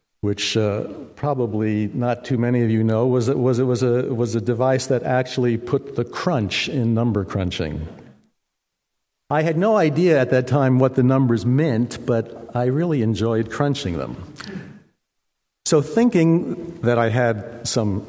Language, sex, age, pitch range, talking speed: English, male, 60-79, 110-135 Hz, 160 wpm